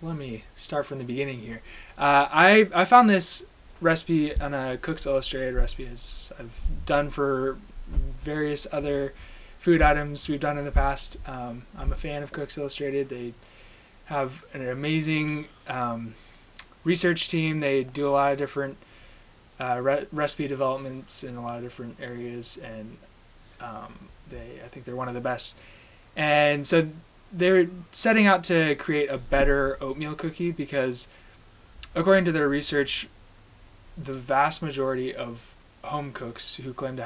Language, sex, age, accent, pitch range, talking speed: English, male, 20-39, American, 125-155 Hz, 155 wpm